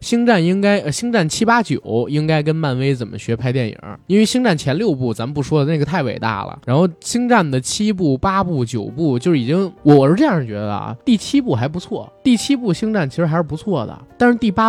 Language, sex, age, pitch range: Chinese, male, 20-39, 130-185 Hz